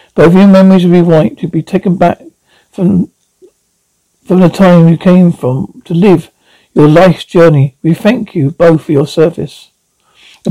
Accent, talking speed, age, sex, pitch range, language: British, 165 wpm, 60-79, male, 160-200 Hz, English